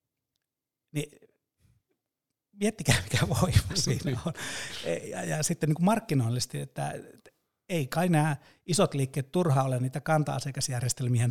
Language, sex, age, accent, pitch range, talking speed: Finnish, male, 60-79, native, 125-150 Hz, 115 wpm